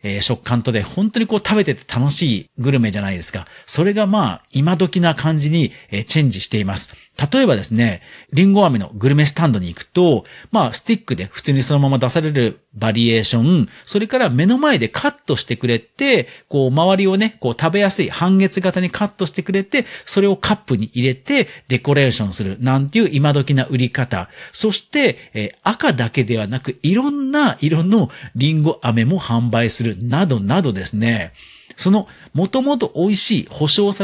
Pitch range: 120-195 Hz